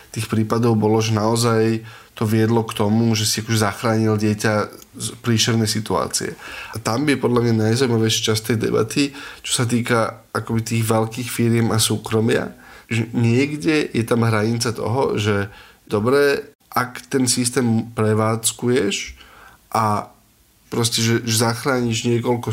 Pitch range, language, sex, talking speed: 110-125 Hz, Slovak, male, 145 wpm